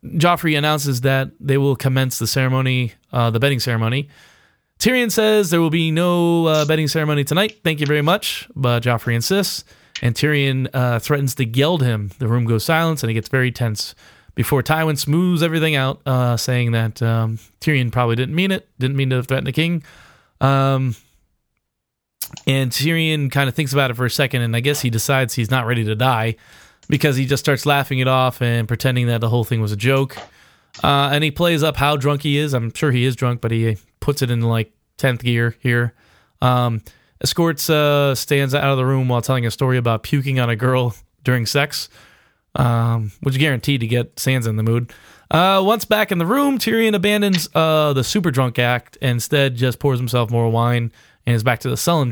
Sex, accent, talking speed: male, American, 205 wpm